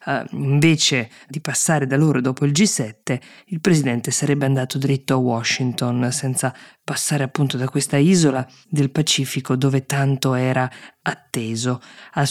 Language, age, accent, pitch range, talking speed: Italian, 20-39, native, 130-145 Hz, 135 wpm